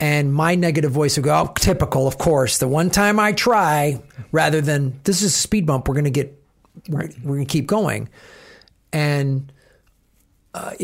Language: English